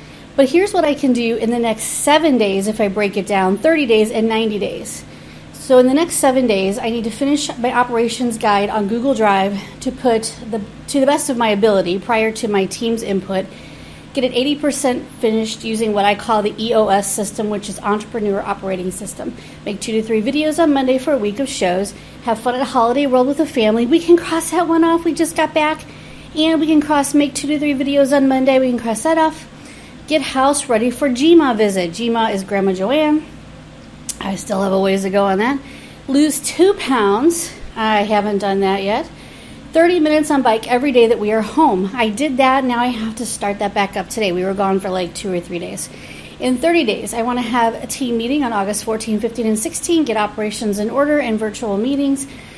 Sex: female